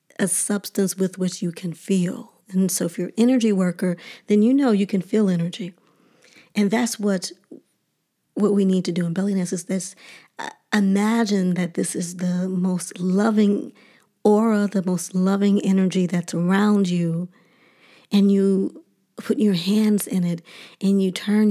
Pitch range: 180-210 Hz